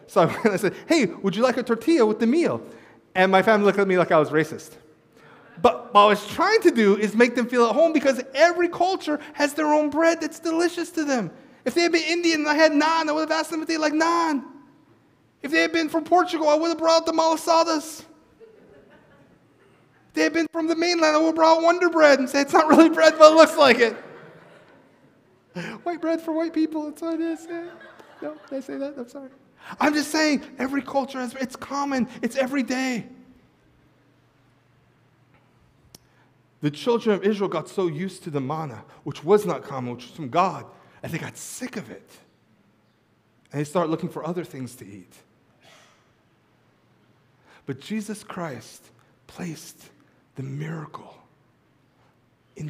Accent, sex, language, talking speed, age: American, male, English, 190 wpm, 30-49